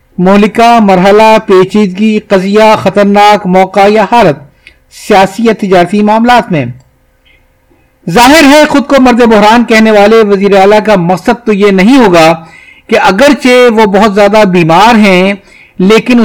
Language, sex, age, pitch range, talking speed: Urdu, male, 50-69, 185-230 Hz, 130 wpm